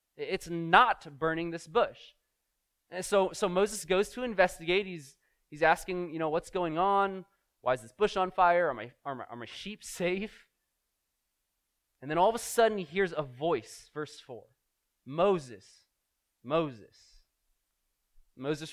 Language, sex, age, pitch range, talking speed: English, male, 20-39, 155-205 Hz, 155 wpm